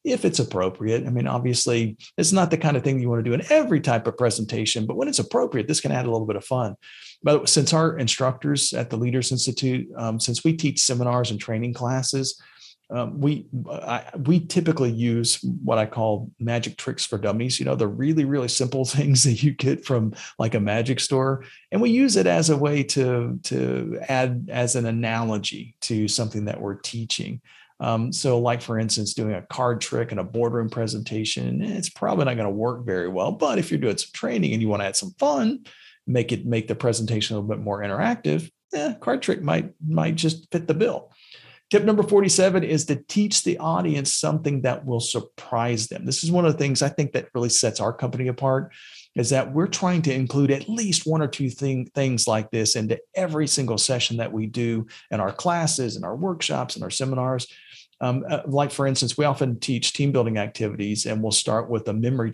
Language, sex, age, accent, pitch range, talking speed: English, male, 40-59, American, 115-150 Hz, 210 wpm